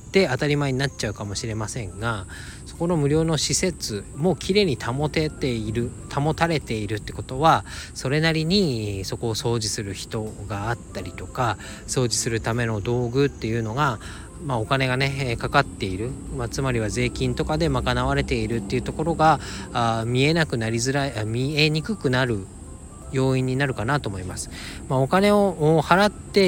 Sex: male